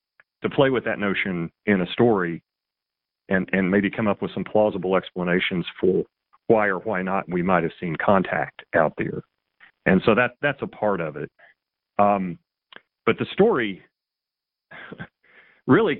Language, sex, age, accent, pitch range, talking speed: English, male, 40-59, American, 95-120 Hz, 155 wpm